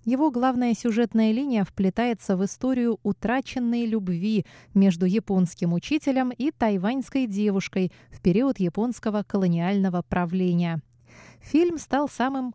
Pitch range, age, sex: 180-230 Hz, 20-39, female